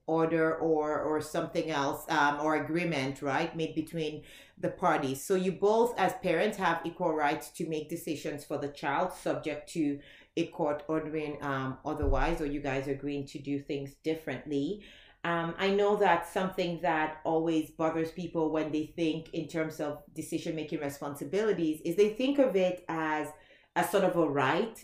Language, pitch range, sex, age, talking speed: English, 155-190 Hz, female, 30-49, 170 wpm